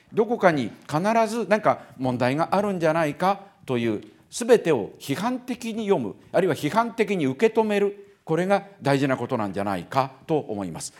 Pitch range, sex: 130-205 Hz, male